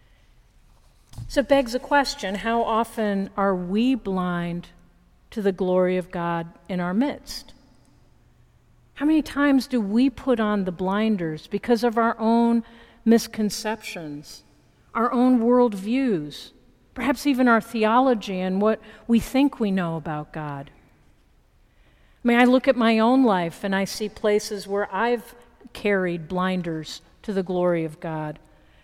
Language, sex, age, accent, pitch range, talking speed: English, female, 50-69, American, 185-230 Hz, 140 wpm